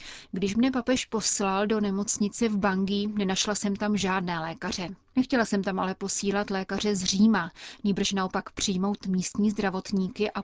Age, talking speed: 30-49, 155 wpm